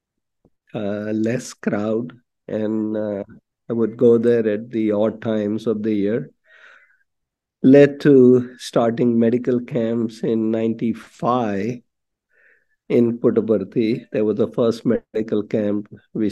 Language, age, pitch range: English, 50-69, 110-125 Hz